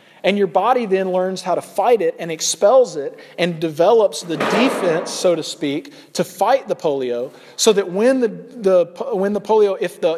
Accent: American